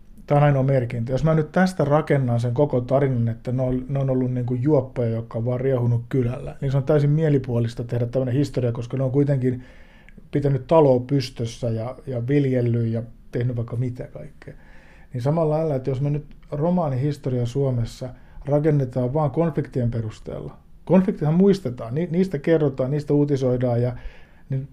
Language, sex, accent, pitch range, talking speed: Finnish, male, native, 120-145 Hz, 170 wpm